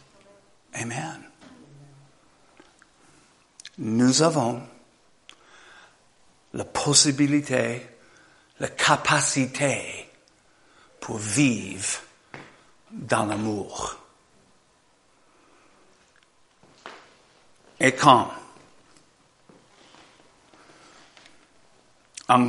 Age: 60-79